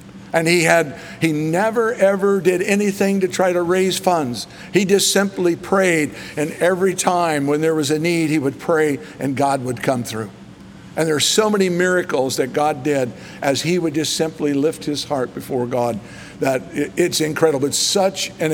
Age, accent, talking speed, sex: 60-79, American, 190 wpm, male